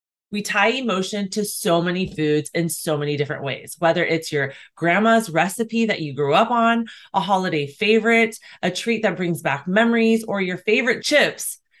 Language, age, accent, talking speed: English, 30-49, American, 180 wpm